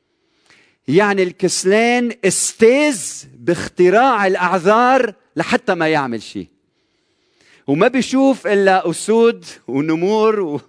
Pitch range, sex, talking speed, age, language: 120-185 Hz, male, 80 wpm, 40-59, Arabic